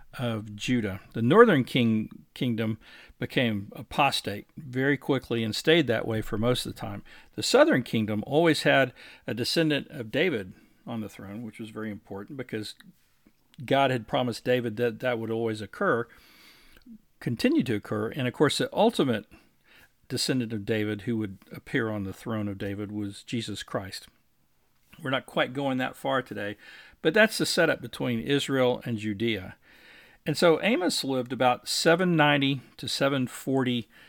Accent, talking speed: American, 155 wpm